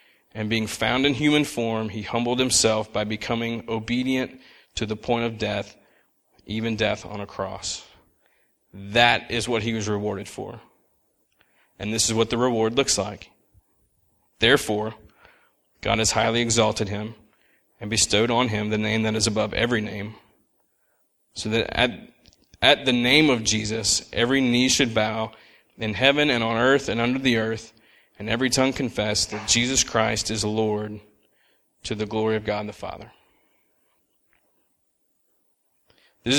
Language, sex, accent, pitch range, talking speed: English, male, American, 105-120 Hz, 150 wpm